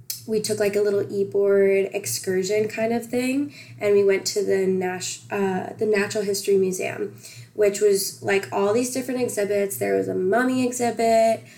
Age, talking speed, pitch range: 10-29, 170 wpm, 190-215 Hz